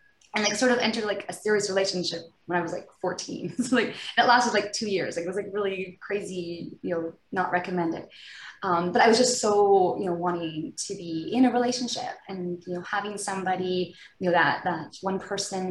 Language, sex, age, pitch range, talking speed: English, female, 20-39, 175-205 Hz, 215 wpm